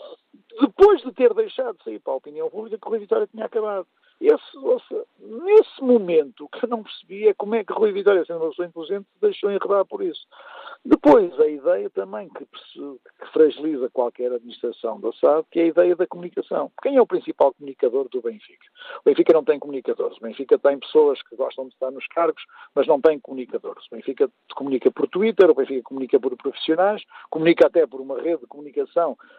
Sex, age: male, 50-69